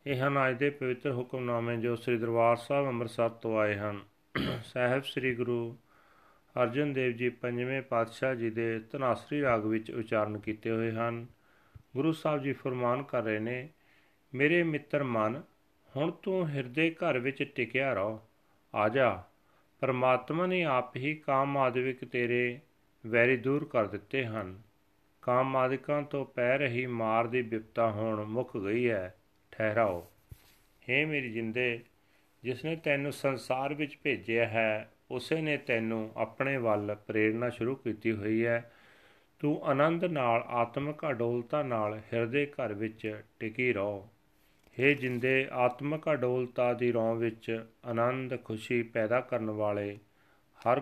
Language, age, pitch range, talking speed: Punjabi, 40-59, 110-135 Hz, 130 wpm